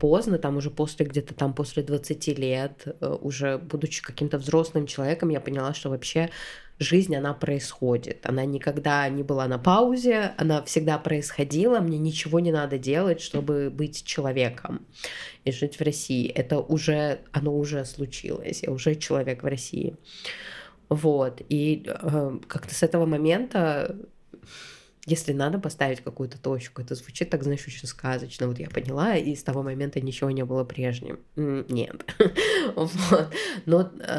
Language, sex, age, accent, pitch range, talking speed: Russian, female, 20-39, native, 135-160 Hz, 140 wpm